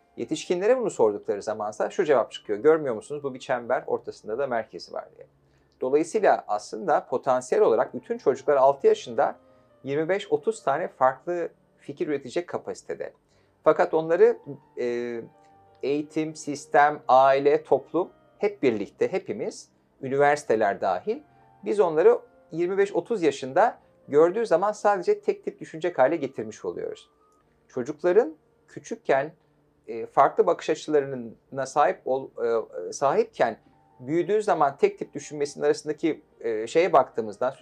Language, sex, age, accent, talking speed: Turkish, male, 40-59, native, 115 wpm